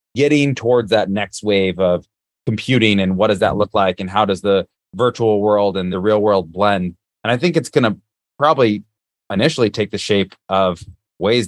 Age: 30-49